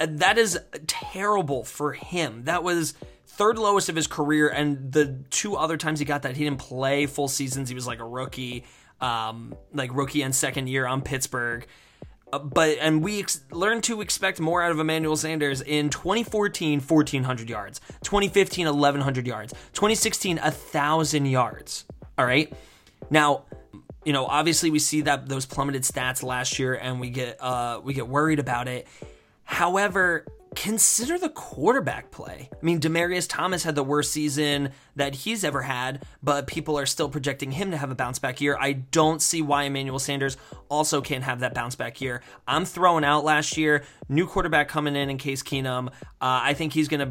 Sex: male